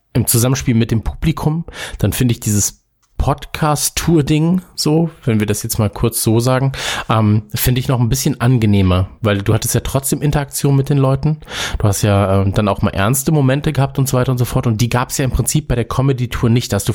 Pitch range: 110-140 Hz